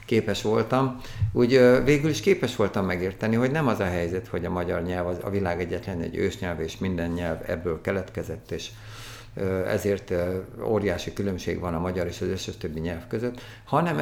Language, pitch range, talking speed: Hungarian, 95-120 Hz, 175 wpm